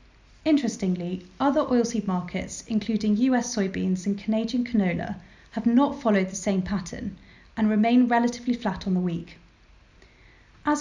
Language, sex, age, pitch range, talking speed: English, female, 30-49, 190-235 Hz, 135 wpm